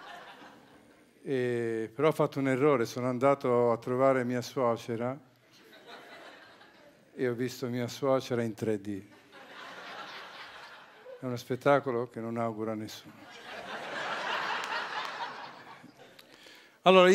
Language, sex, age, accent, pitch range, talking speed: Italian, male, 50-69, native, 120-145 Hz, 95 wpm